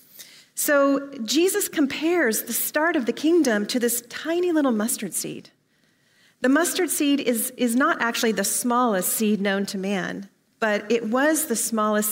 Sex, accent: female, American